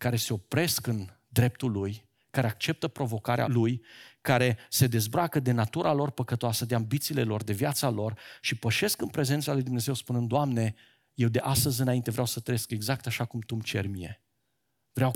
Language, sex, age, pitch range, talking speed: Romanian, male, 40-59, 115-155 Hz, 180 wpm